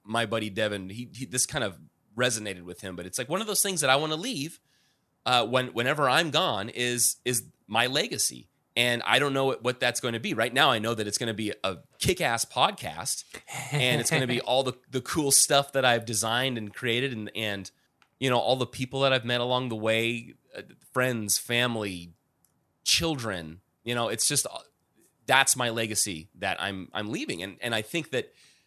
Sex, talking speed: male, 210 wpm